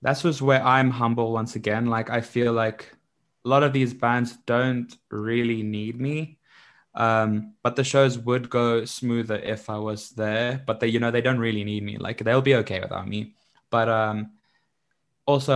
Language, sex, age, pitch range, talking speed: English, male, 20-39, 110-120 Hz, 190 wpm